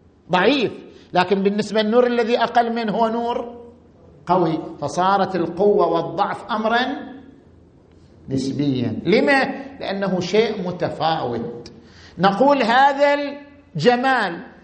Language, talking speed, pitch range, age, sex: Arabic, 90 wpm, 160-235 Hz, 50-69, male